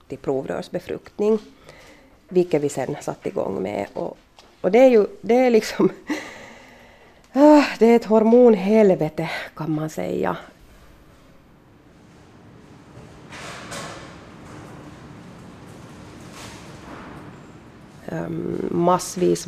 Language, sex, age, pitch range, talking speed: Swedish, female, 30-49, 150-205 Hz, 75 wpm